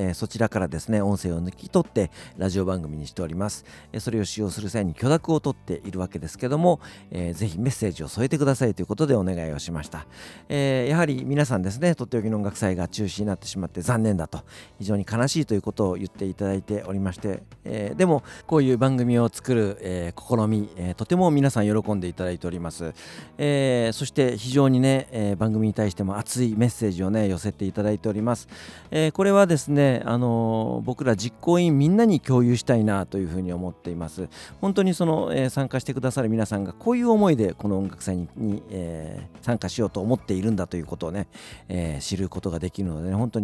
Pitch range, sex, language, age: 95-135 Hz, male, Japanese, 40-59